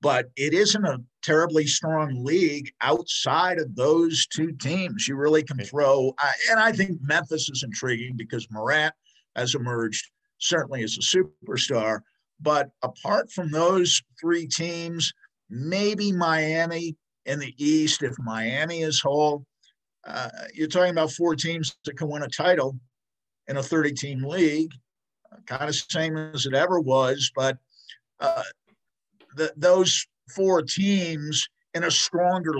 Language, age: English, 50-69